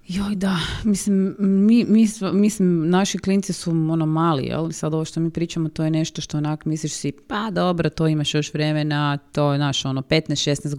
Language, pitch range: Croatian, 150-185 Hz